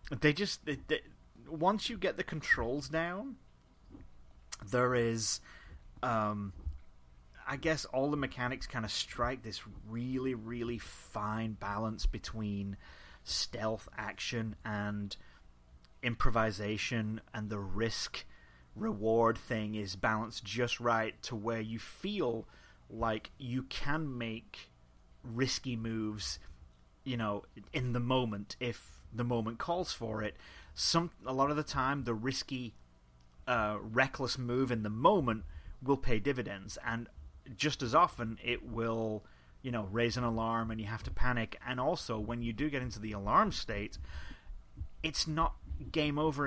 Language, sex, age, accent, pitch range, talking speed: English, male, 30-49, British, 100-130 Hz, 135 wpm